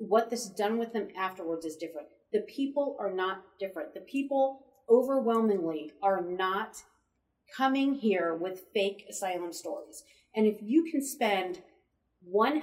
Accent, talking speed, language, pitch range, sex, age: American, 145 wpm, English, 180-245 Hz, female, 40-59